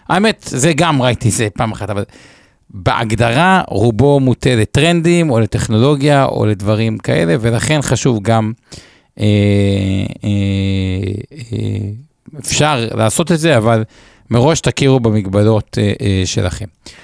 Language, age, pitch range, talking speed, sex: Hebrew, 50-69, 100-130 Hz, 120 wpm, male